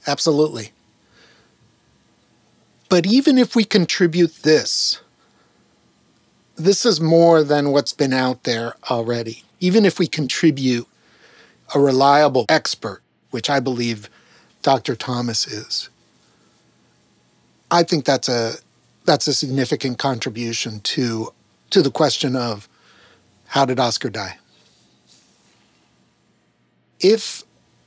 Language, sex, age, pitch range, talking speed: English, male, 50-69, 125-170 Hz, 100 wpm